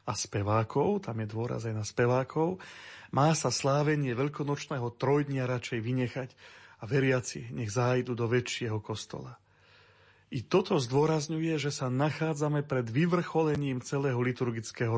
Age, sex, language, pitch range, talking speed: 40-59, male, Slovak, 120-145 Hz, 130 wpm